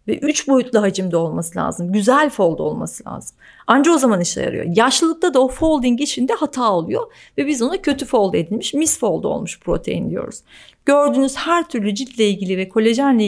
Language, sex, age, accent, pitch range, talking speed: Turkish, female, 40-59, native, 200-260 Hz, 175 wpm